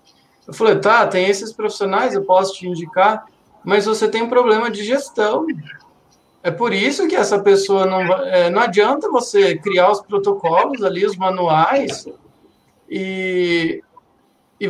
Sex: male